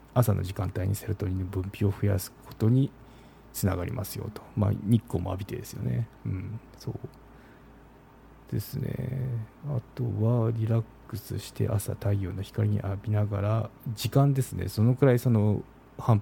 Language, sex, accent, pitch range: Japanese, male, native, 100-130 Hz